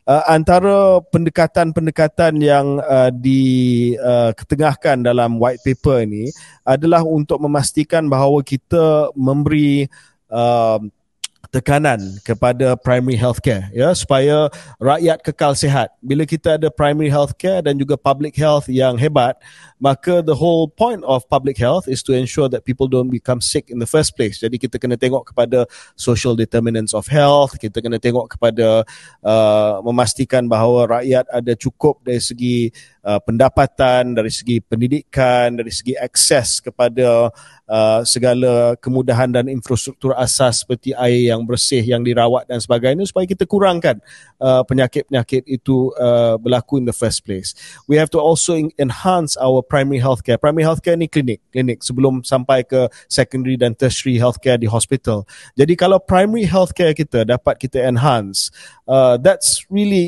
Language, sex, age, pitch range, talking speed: Malay, male, 30-49, 120-150 Hz, 140 wpm